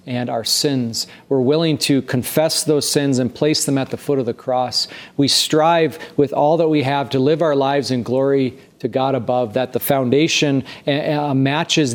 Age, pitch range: 40-59, 125-155 Hz